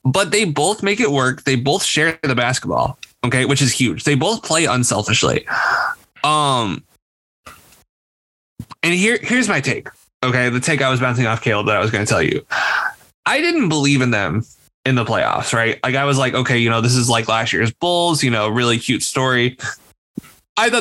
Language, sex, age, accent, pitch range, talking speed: English, male, 20-39, American, 115-155 Hz, 200 wpm